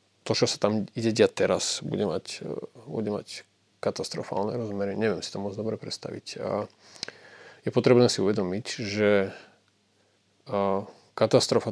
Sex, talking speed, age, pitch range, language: male, 125 wpm, 30-49, 95-110 Hz, Slovak